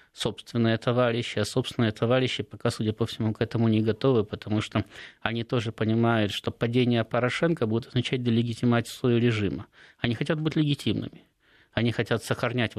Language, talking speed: Russian, 155 wpm